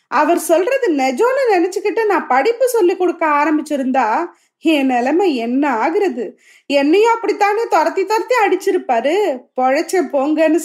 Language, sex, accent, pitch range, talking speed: Tamil, female, native, 295-400 Hz, 115 wpm